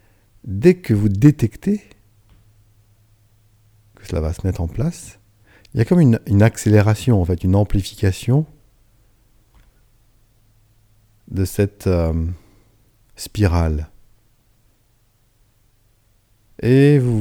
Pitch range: 95-110 Hz